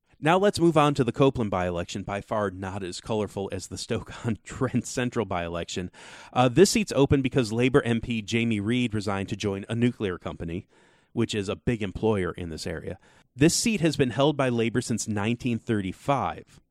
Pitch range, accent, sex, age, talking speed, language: 100-135 Hz, American, male, 30-49, 175 wpm, English